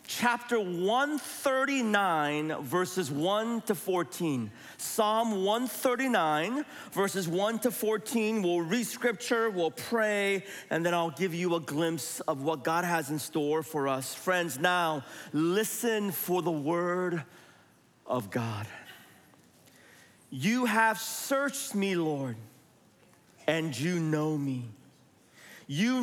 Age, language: 40-59, English